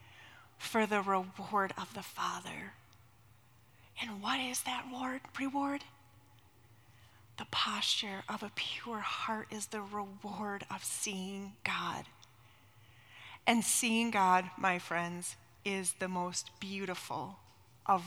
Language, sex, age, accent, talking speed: English, female, 30-49, American, 110 wpm